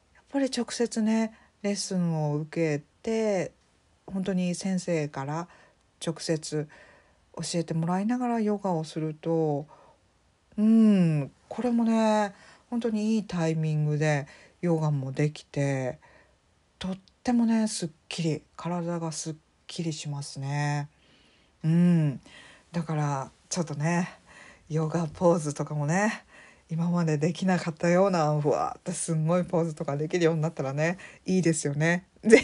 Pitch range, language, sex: 150-195 Hz, Japanese, female